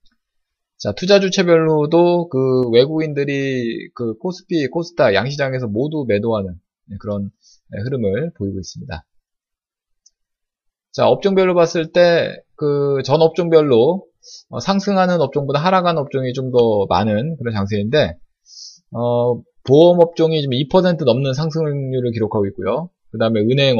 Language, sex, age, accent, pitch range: Korean, male, 20-39, native, 115-175 Hz